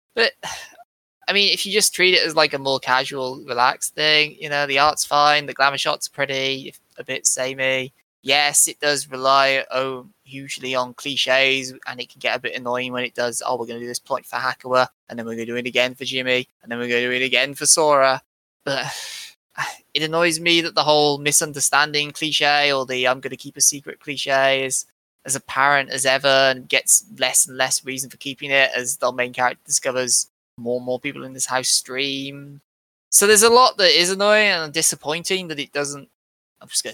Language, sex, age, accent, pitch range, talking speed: English, male, 10-29, British, 125-150 Hz, 220 wpm